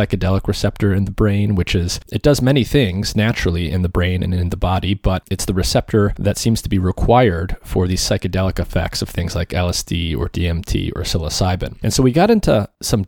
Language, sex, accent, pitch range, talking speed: English, male, American, 95-110 Hz, 210 wpm